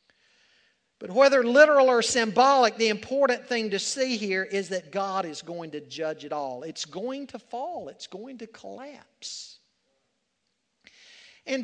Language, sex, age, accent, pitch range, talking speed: English, male, 50-69, American, 215-275 Hz, 150 wpm